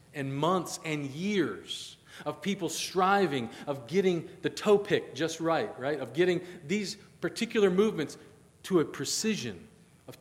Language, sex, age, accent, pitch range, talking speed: English, male, 40-59, American, 165-215 Hz, 135 wpm